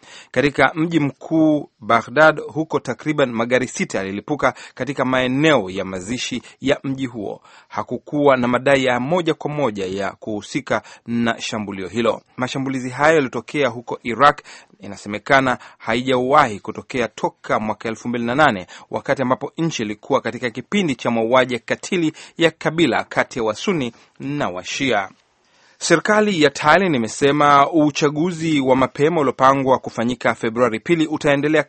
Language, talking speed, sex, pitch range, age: Swahili, 125 wpm, male, 120-150 Hz, 30-49